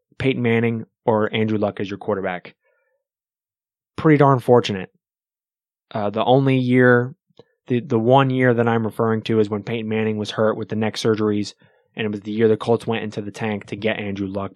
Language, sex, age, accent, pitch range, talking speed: English, male, 20-39, American, 105-125 Hz, 200 wpm